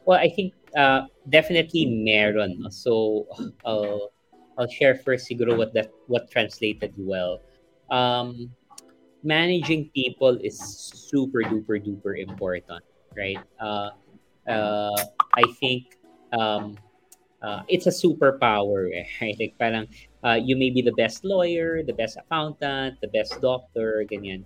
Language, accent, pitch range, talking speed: Filipino, native, 105-130 Hz, 125 wpm